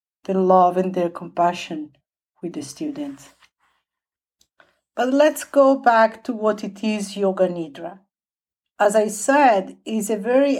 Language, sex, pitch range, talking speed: English, female, 195-240 Hz, 135 wpm